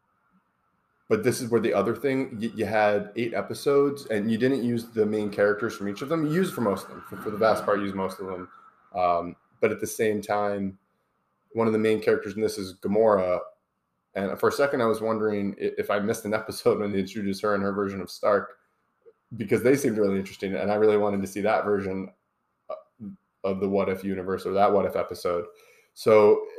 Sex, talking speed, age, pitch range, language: male, 220 wpm, 20-39, 95-115 Hz, English